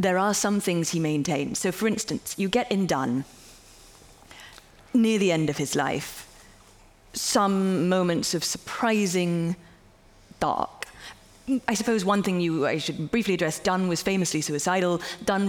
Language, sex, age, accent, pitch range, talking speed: English, female, 30-49, British, 165-205 Hz, 145 wpm